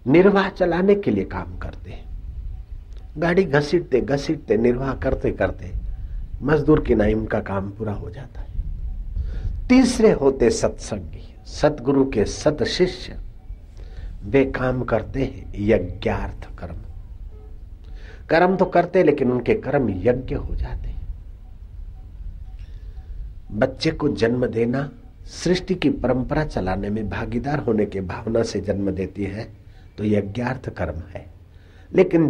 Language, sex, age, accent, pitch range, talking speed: Hindi, male, 60-79, native, 90-130 Hz, 125 wpm